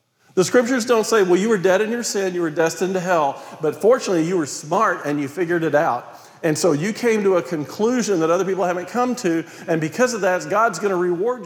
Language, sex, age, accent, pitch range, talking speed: English, male, 50-69, American, 175-225 Hz, 245 wpm